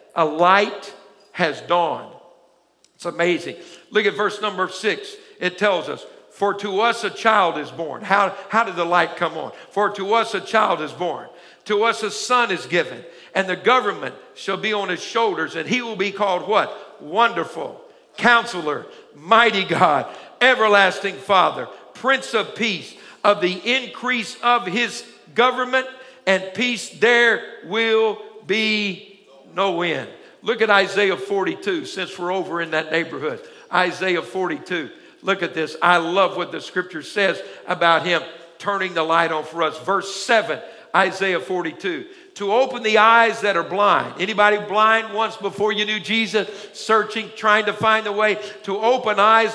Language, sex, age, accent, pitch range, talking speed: English, male, 60-79, American, 180-225 Hz, 160 wpm